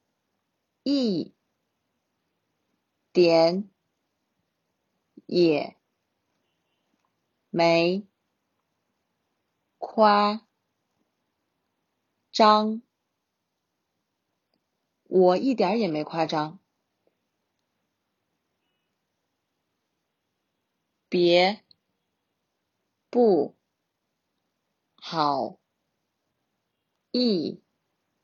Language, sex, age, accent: Chinese, female, 40-59, native